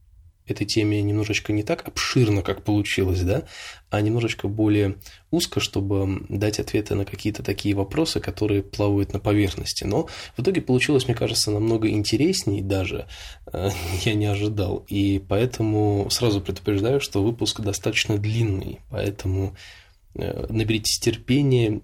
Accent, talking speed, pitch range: native, 130 wpm, 100-110 Hz